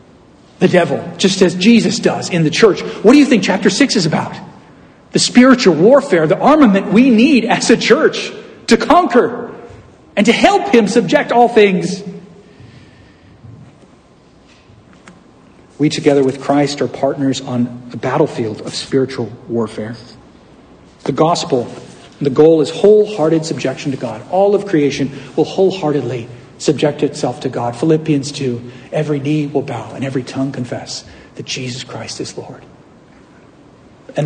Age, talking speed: 50-69, 145 wpm